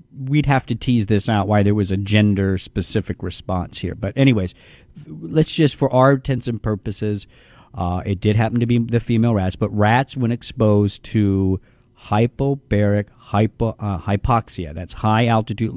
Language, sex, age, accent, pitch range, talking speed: English, male, 40-59, American, 100-125 Hz, 160 wpm